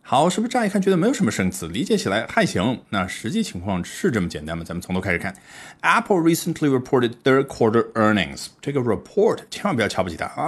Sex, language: male, Chinese